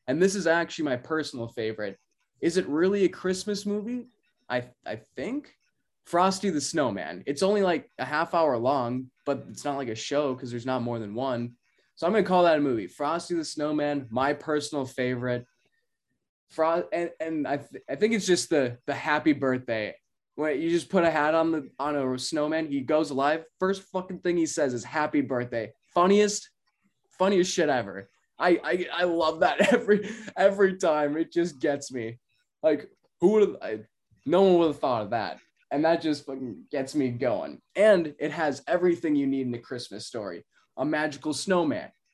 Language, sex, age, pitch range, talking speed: English, male, 20-39, 135-185 Hz, 190 wpm